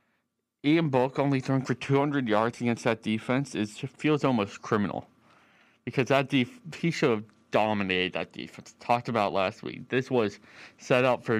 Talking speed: 170 wpm